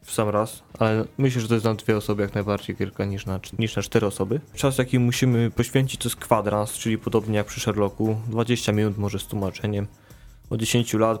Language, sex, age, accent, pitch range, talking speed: Polish, male, 20-39, native, 110-135 Hz, 220 wpm